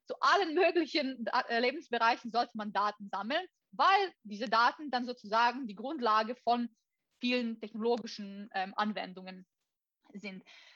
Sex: female